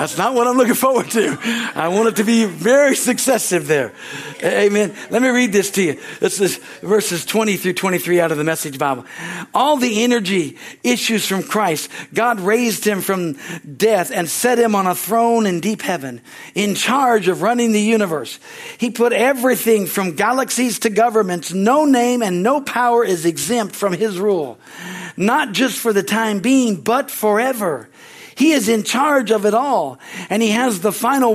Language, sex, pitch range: English, male, 190-240 Hz